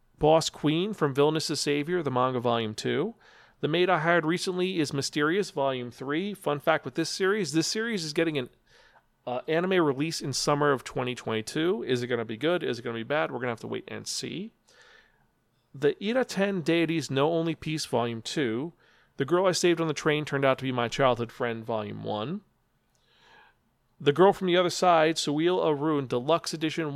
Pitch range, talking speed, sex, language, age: 125-165 Hz, 205 wpm, male, English, 40-59